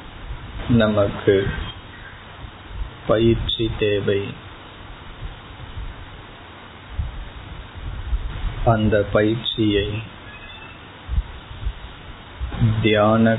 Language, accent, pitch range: Tamil, native, 95-110 Hz